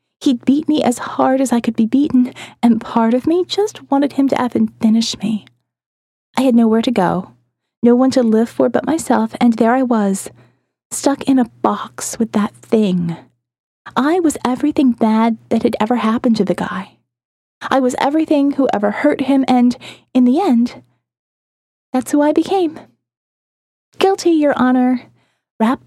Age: 20-39